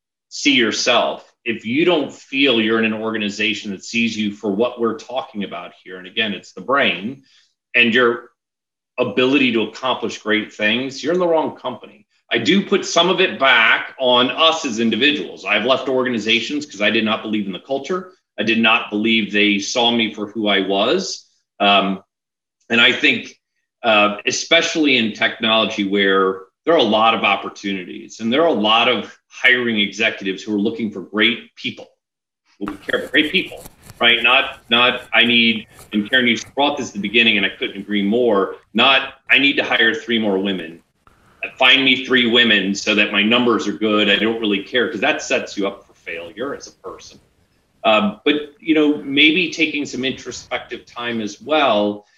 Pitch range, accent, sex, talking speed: 105-130 Hz, American, male, 190 wpm